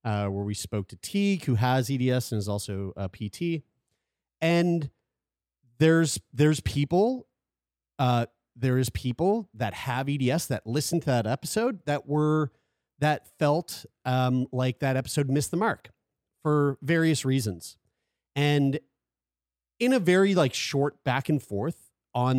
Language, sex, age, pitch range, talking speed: English, male, 30-49, 105-145 Hz, 145 wpm